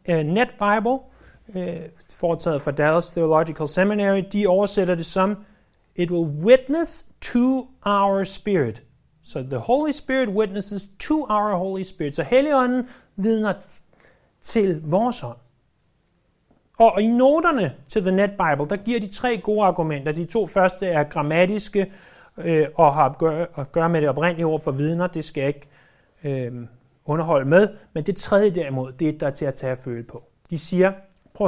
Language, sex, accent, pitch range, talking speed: Danish, male, native, 150-215 Hz, 155 wpm